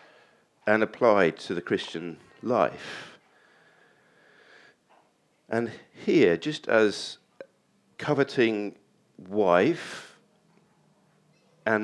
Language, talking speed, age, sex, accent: English, 65 wpm, 50-69, male, British